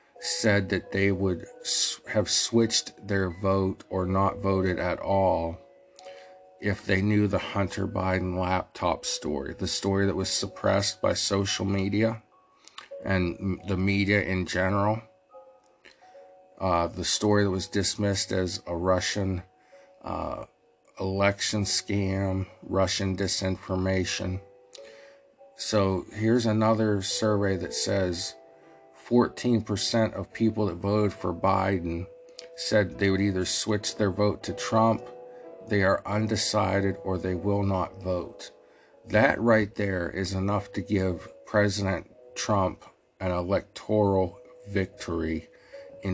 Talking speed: 120 wpm